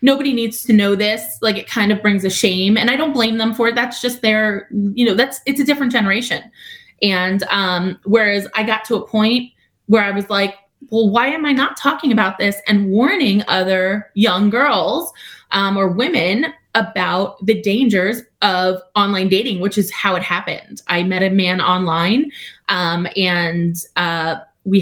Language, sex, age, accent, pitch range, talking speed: English, female, 20-39, American, 180-225 Hz, 185 wpm